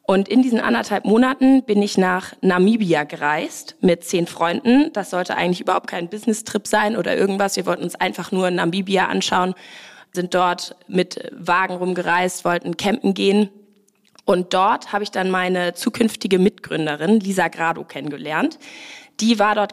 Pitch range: 180-210 Hz